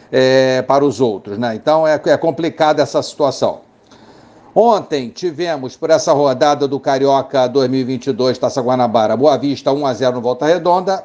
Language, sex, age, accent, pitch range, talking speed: Portuguese, male, 60-79, Brazilian, 130-165 Hz, 145 wpm